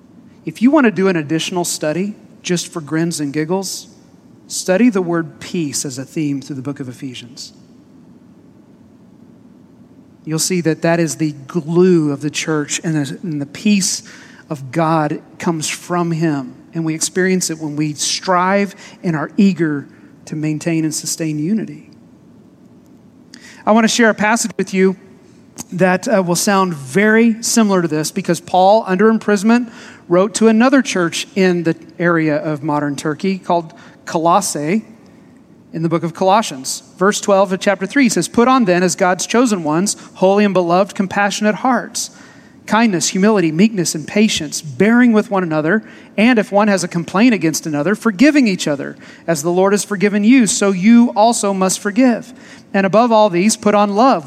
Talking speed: 170 wpm